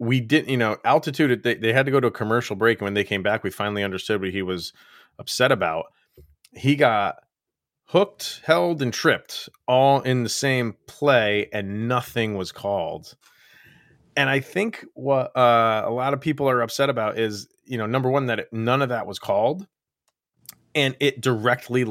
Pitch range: 110-140 Hz